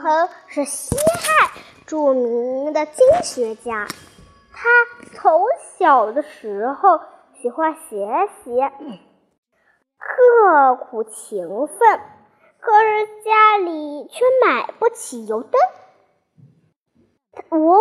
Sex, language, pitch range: male, Chinese, 295-425 Hz